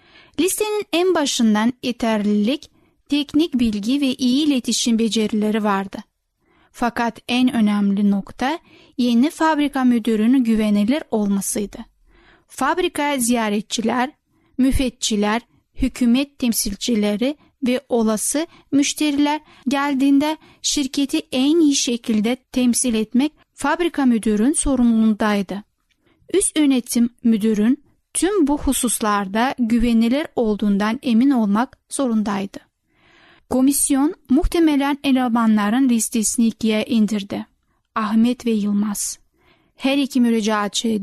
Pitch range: 220-280 Hz